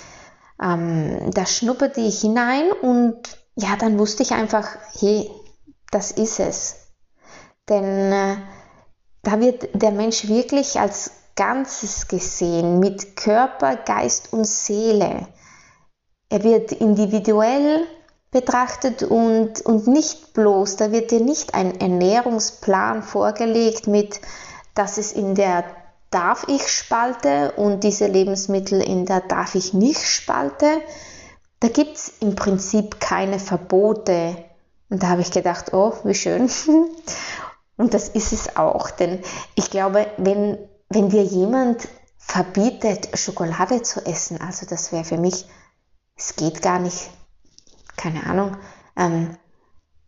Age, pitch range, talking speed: 20-39, 190-230 Hz, 125 wpm